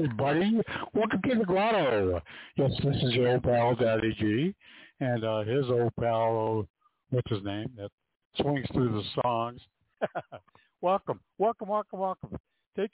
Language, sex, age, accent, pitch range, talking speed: English, male, 60-79, American, 125-185 Hz, 150 wpm